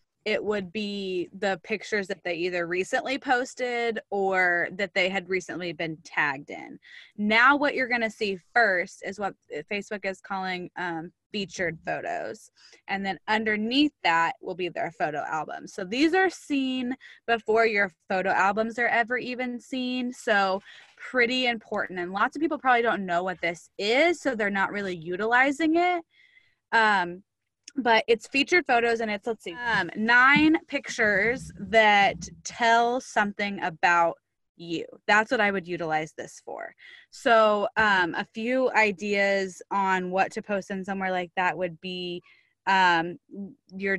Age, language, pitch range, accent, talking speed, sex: 20-39, English, 185-235 Hz, American, 155 wpm, female